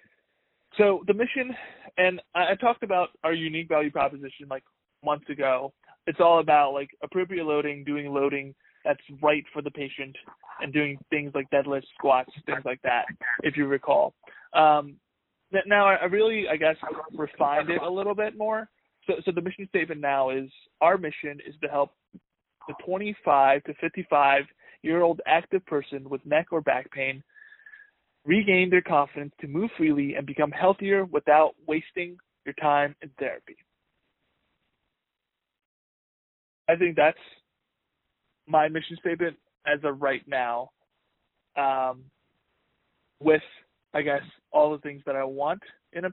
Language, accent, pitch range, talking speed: English, American, 140-170 Hz, 145 wpm